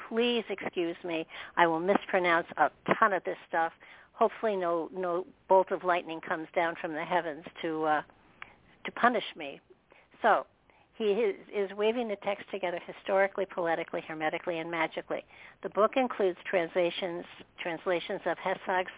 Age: 60-79